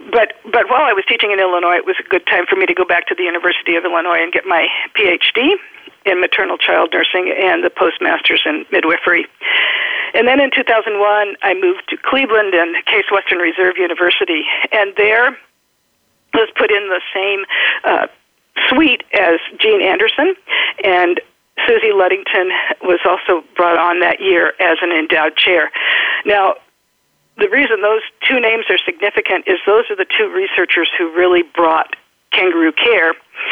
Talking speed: 165 wpm